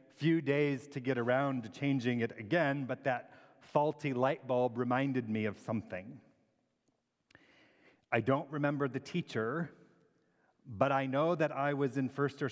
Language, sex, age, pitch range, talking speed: English, male, 40-59, 120-145 Hz, 155 wpm